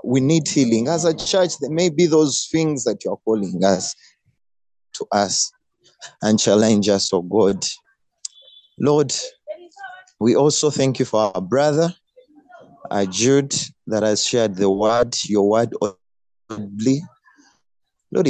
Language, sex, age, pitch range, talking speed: English, male, 30-49, 105-145 Hz, 135 wpm